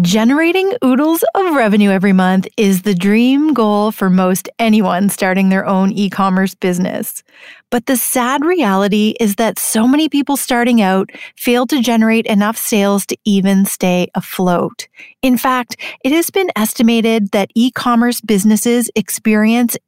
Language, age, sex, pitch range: English, 30-49, female, 200-250 Hz